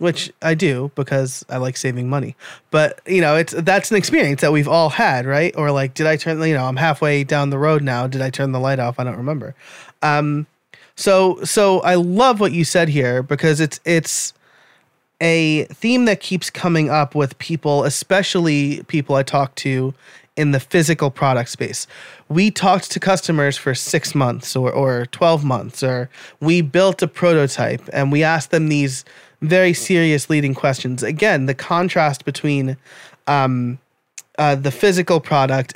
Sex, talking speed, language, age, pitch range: male, 180 wpm, English, 30-49, 135-170 Hz